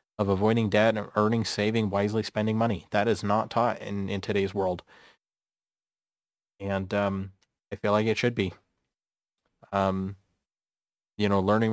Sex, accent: male, American